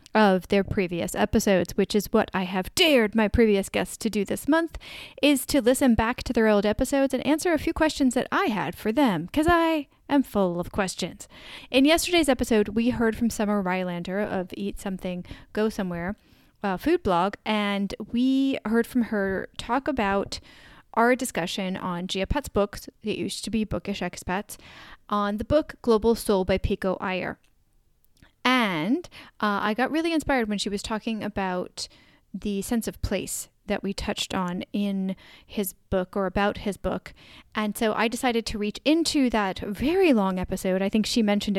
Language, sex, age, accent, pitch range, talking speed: English, female, 10-29, American, 200-250 Hz, 180 wpm